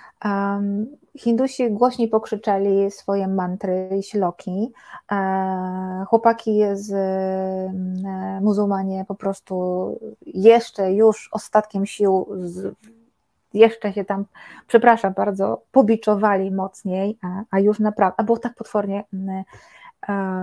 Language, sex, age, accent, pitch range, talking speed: Polish, female, 20-39, native, 190-215 Hz, 100 wpm